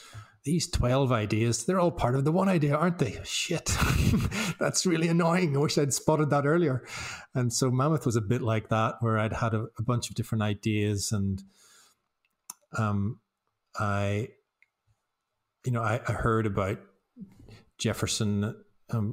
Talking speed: 155 wpm